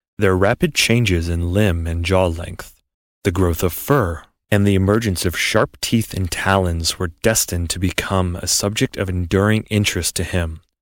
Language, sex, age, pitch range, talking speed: English, male, 30-49, 90-110 Hz, 170 wpm